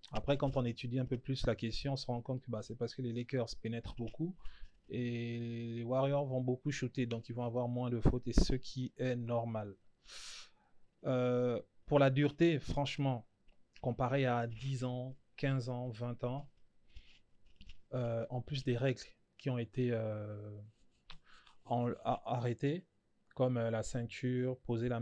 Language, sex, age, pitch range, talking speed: French, male, 20-39, 115-130 Hz, 165 wpm